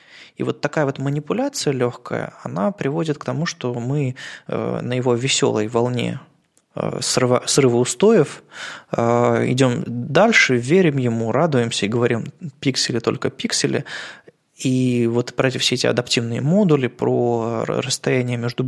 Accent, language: native, Russian